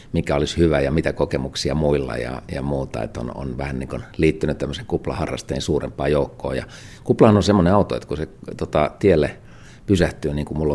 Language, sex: Finnish, male